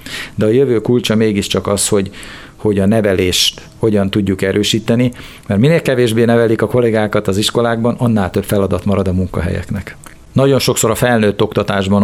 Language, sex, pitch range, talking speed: Hungarian, male, 100-115 Hz, 160 wpm